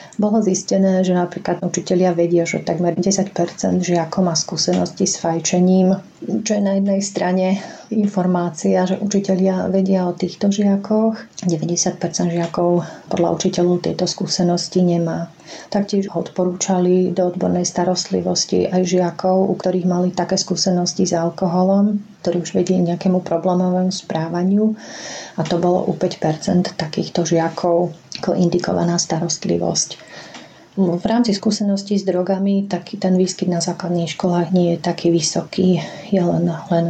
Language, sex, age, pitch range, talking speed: Slovak, female, 40-59, 175-195 Hz, 135 wpm